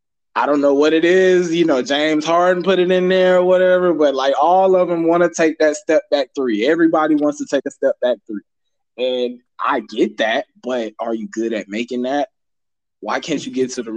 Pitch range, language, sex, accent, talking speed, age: 125-165 Hz, English, male, American, 230 wpm, 20-39